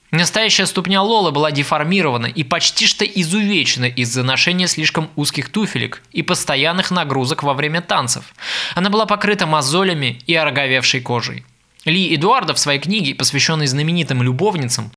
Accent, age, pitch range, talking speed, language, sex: native, 20-39, 140-190 Hz, 140 wpm, Russian, male